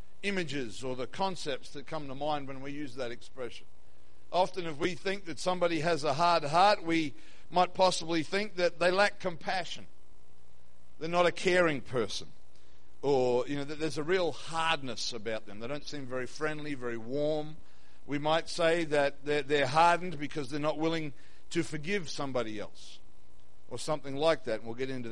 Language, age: English, 50-69